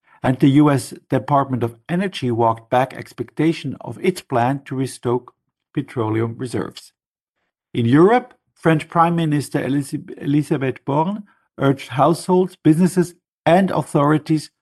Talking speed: 115 wpm